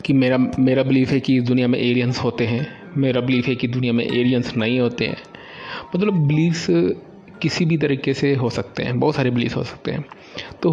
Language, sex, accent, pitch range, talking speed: Hindi, male, native, 125-155 Hz, 215 wpm